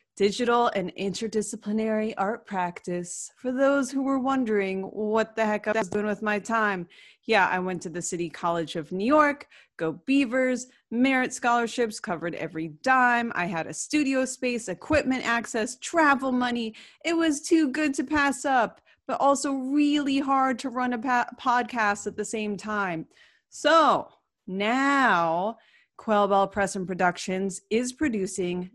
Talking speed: 150 wpm